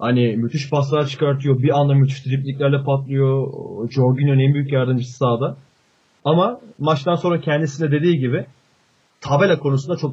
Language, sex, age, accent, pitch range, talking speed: Turkish, male, 30-49, native, 130-175 Hz, 135 wpm